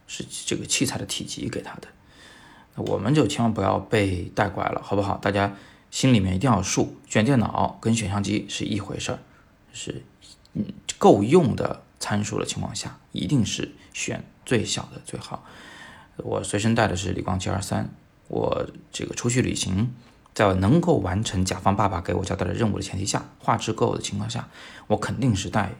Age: 20-39